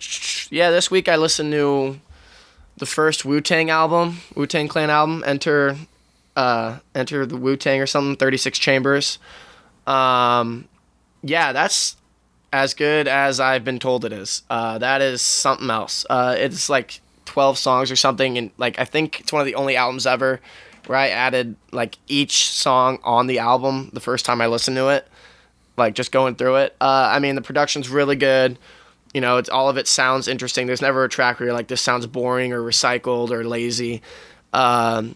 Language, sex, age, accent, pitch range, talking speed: English, male, 10-29, American, 120-135 Hz, 185 wpm